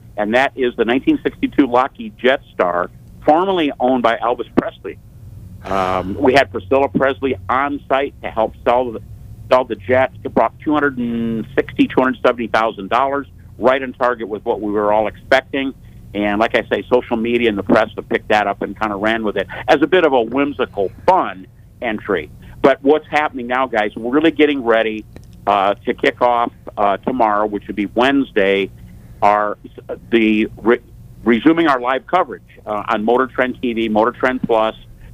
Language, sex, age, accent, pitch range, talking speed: English, male, 50-69, American, 110-130 Hz, 175 wpm